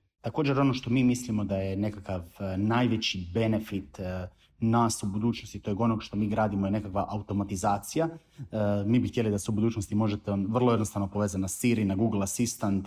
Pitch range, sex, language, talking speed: 100-120 Hz, male, Croatian, 175 wpm